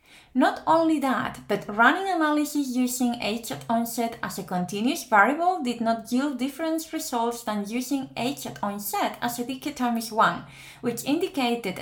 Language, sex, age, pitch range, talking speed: English, female, 30-49, 205-275 Hz, 150 wpm